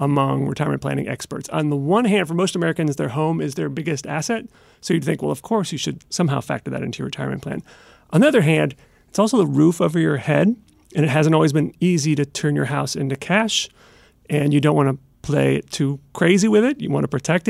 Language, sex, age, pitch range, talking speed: English, male, 30-49, 145-195 Hz, 240 wpm